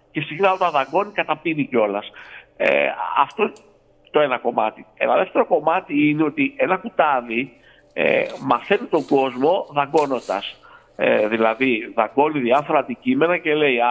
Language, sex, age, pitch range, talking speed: Greek, male, 50-69, 130-185 Hz, 135 wpm